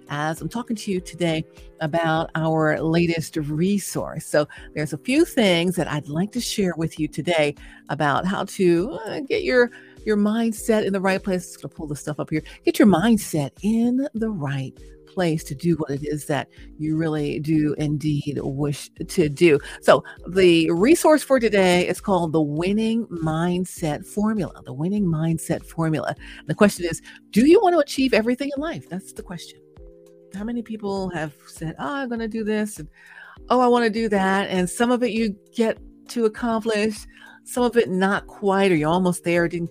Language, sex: English, female